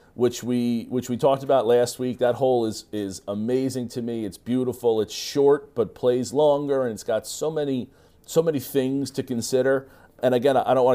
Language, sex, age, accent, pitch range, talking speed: English, male, 40-59, American, 110-130 Hz, 205 wpm